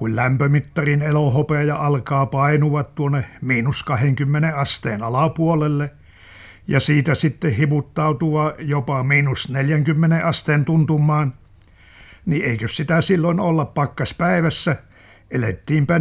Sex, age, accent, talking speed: male, 60-79, native, 95 wpm